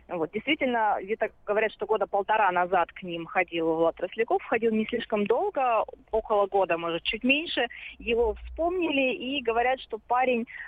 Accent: native